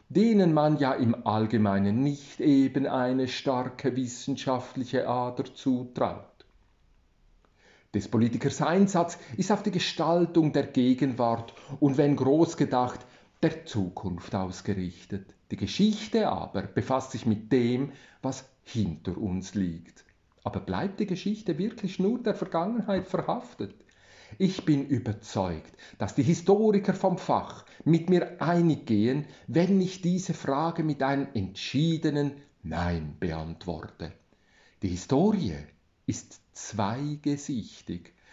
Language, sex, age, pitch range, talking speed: German, male, 40-59, 105-160 Hz, 115 wpm